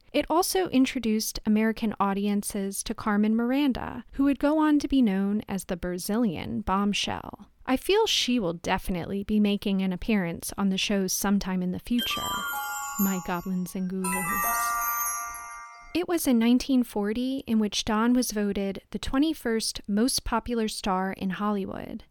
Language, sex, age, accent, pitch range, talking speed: English, female, 30-49, American, 205-260 Hz, 150 wpm